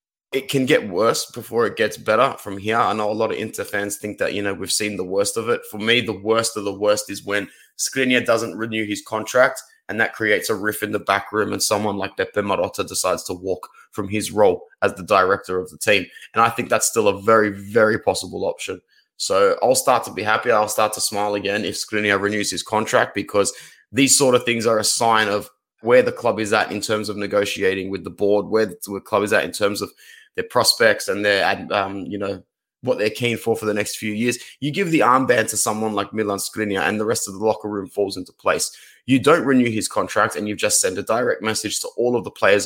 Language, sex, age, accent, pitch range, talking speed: English, male, 20-39, Australian, 105-130 Hz, 245 wpm